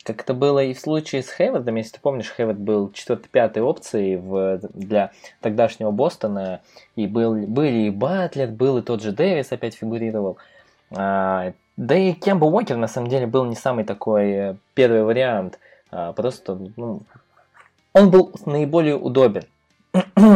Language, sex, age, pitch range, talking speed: Russian, male, 20-39, 110-145 Hz, 155 wpm